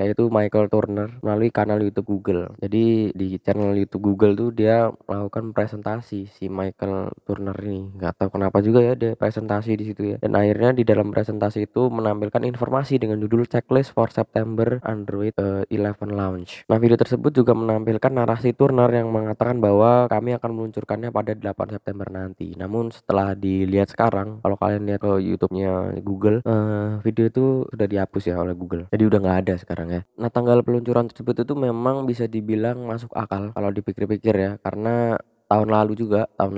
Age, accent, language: 10-29, native, Indonesian